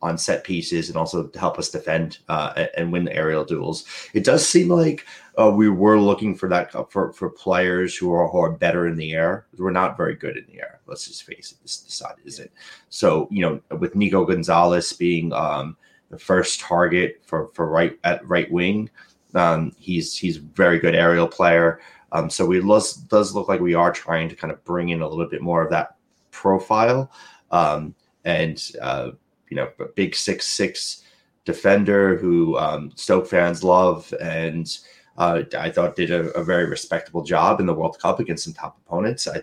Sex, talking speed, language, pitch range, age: male, 200 wpm, English, 85-95 Hz, 30-49